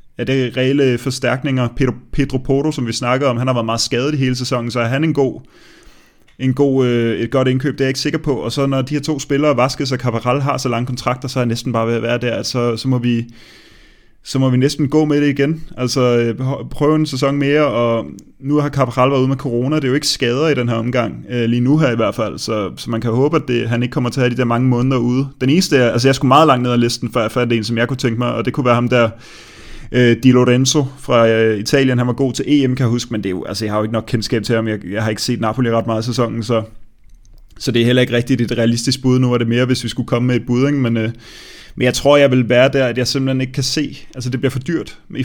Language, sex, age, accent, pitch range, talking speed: Danish, male, 30-49, native, 120-135 Hz, 290 wpm